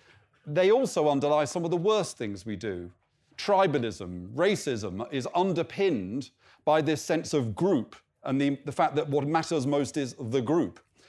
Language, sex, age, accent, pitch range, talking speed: English, male, 40-59, British, 130-175 Hz, 160 wpm